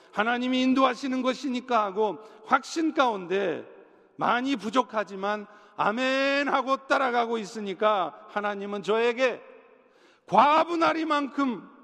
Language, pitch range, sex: Korean, 195-260 Hz, male